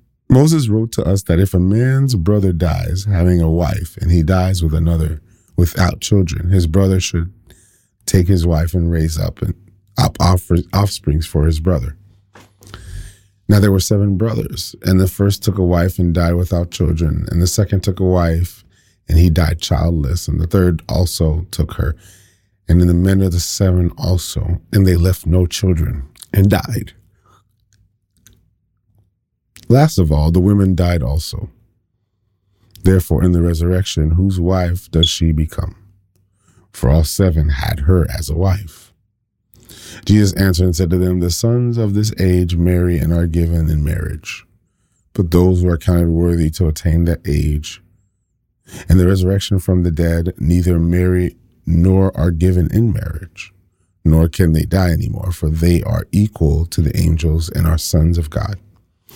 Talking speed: 165 wpm